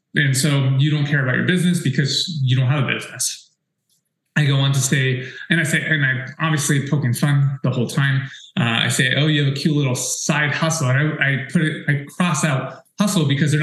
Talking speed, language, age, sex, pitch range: 230 wpm, English, 20-39, male, 130-150 Hz